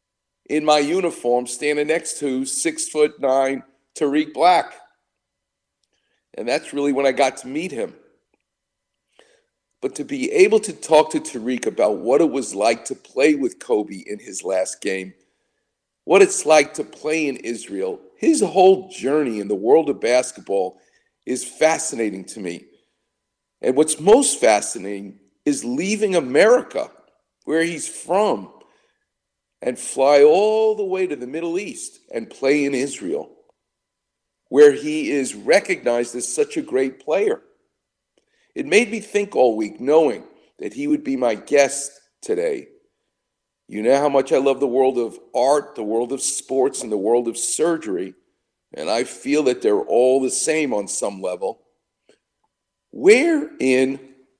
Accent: American